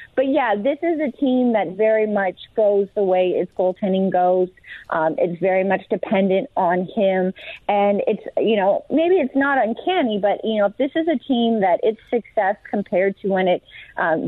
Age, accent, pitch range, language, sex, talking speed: 30-49, American, 185-225 Hz, English, female, 195 wpm